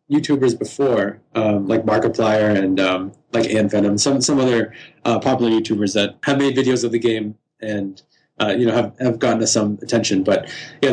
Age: 20-39